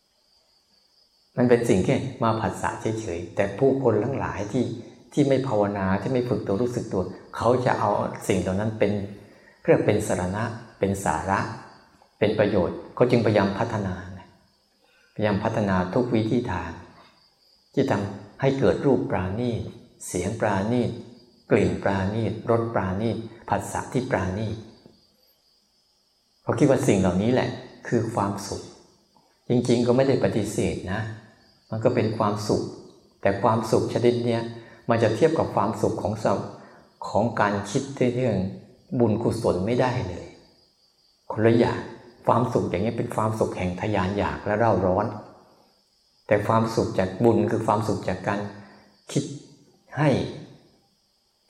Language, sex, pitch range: Thai, male, 100-120 Hz